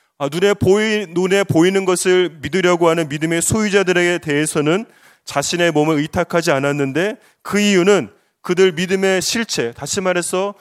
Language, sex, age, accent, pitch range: Korean, male, 30-49, native, 155-190 Hz